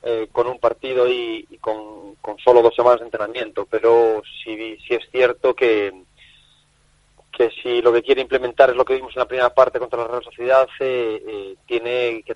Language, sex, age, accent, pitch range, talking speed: Spanish, male, 30-49, Spanish, 120-150 Hz, 200 wpm